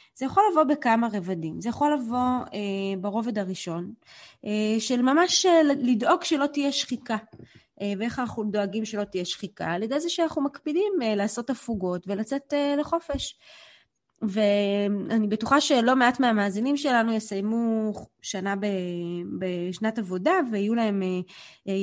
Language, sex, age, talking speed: Hebrew, female, 20-39, 145 wpm